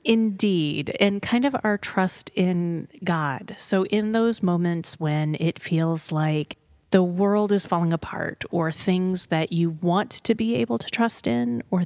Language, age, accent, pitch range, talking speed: English, 30-49, American, 165-195 Hz, 165 wpm